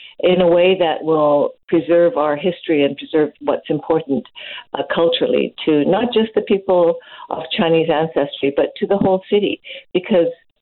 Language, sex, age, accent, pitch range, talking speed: English, female, 50-69, American, 150-185 Hz, 160 wpm